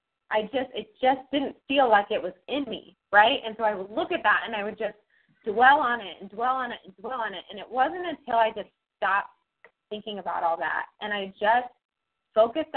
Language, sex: English, female